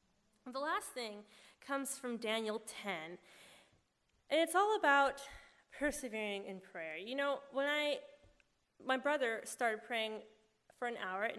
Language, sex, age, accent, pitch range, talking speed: English, female, 20-39, American, 200-290 Hz, 135 wpm